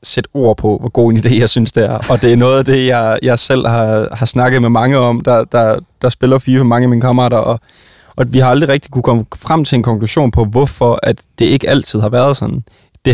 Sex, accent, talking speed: male, native, 260 wpm